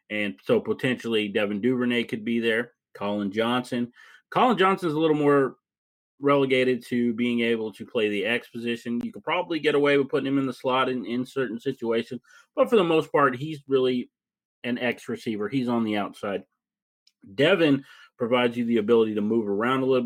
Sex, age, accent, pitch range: male, 30-49, American, 110-130 Hz